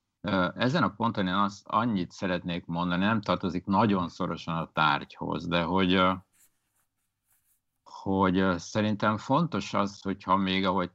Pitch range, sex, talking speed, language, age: 80-95 Hz, male, 125 wpm, Hungarian, 50-69